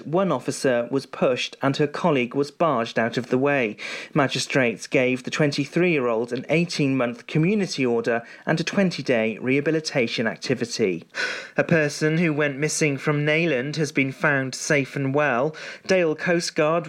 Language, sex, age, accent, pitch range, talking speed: English, male, 30-49, British, 135-165 Hz, 145 wpm